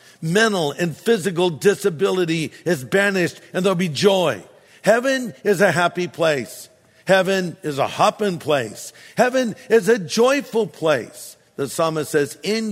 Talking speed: 135 wpm